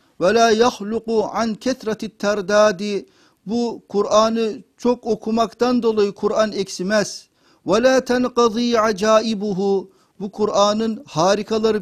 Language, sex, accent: Turkish, male, native